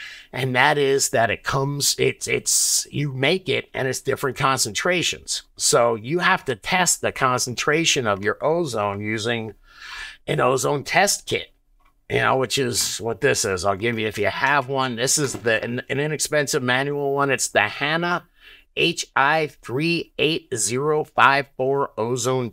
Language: English